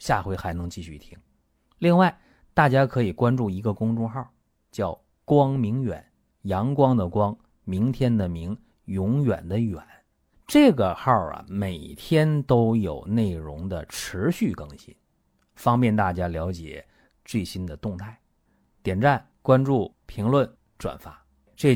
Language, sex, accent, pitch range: Chinese, male, native, 90-135 Hz